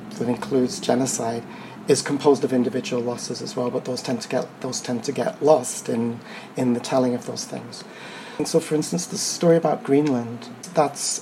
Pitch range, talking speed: 120-140 Hz, 185 wpm